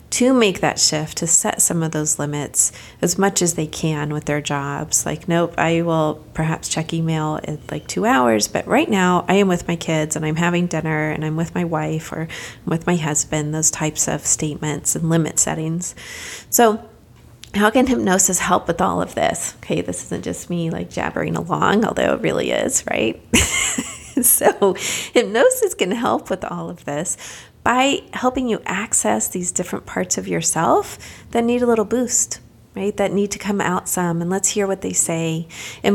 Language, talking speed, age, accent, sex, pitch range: English, 190 wpm, 30-49, American, female, 155-195 Hz